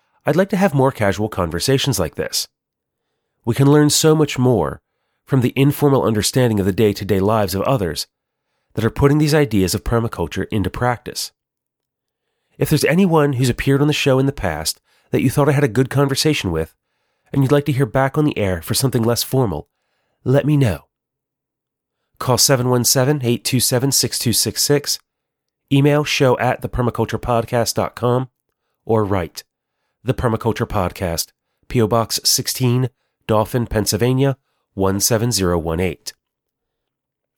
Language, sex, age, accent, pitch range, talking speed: English, male, 30-49, American, 110-145 Hz, 140 wpm